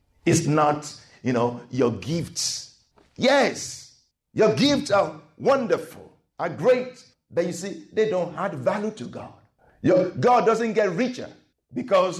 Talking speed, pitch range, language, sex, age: 135 wpm, 130-200 Hz, English, male, 50-69